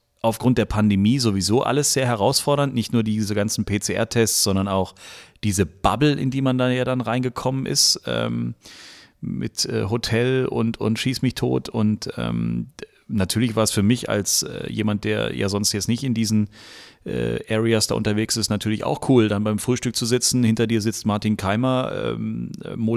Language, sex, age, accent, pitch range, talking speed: German, male, 40-59, German, 105-125 Hz, 185 wpm